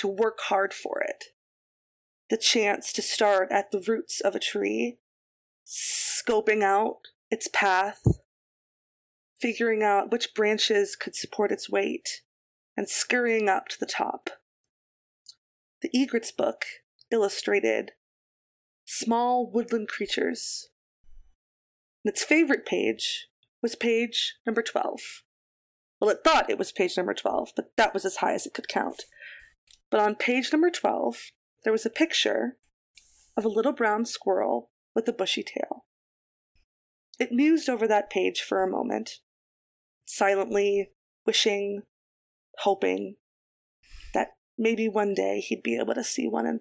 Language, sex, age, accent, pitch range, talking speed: English, female, 20-39, American, 190-235 Hz, 135 wpm